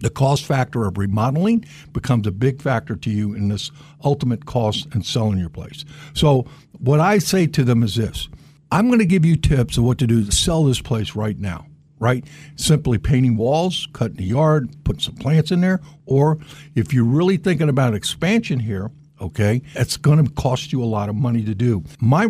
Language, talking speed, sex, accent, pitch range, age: English, 205 wpm, male, American, 120-150 Hz, 60-79